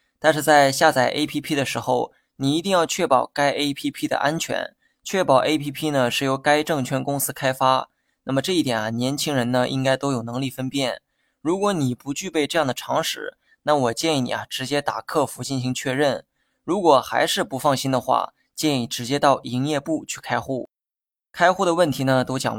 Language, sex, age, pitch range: Chinese, male, 20-39, 130-155 Hz